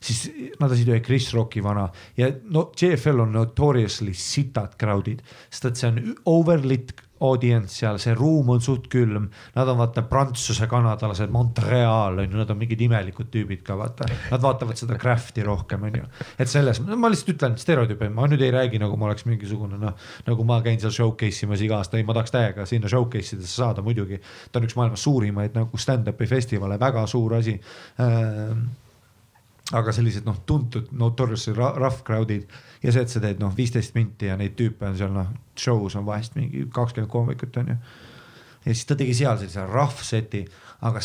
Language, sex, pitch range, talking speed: English, male, 110-130 Hz, 180 wpm